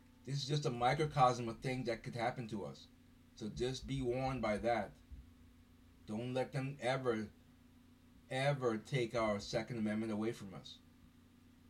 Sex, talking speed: male, 155 wpm